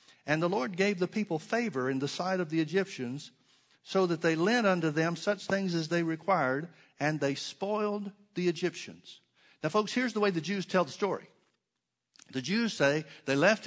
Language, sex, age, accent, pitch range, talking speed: English, male, 60-79, American, 140-190 Hz, 195 wpm